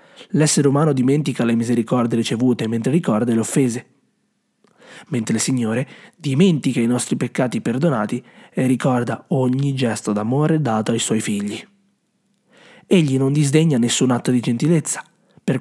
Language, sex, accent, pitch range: Italian, male, native, 120-190 Hz